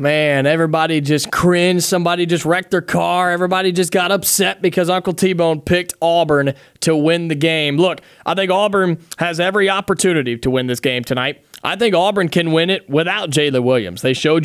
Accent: American